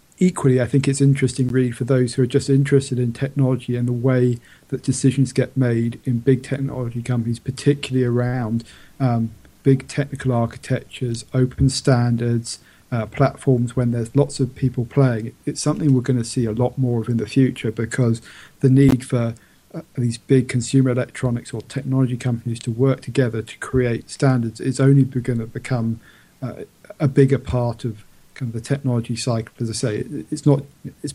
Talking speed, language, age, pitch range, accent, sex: 180 wpm, English, 40-59, 120-135 Hz, British, male